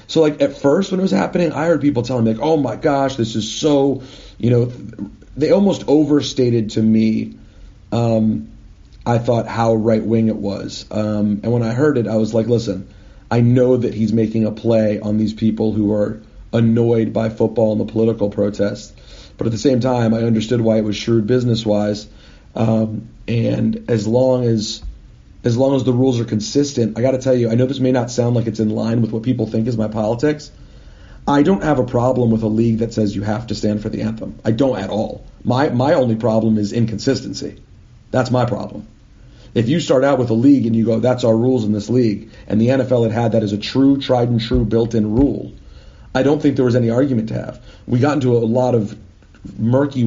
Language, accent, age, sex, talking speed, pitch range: English, American, 40-59, male, 220 wpm, 110-125 Hz